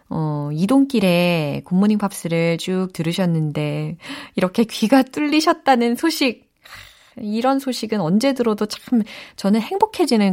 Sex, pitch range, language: female, 165-260 Hz, Korean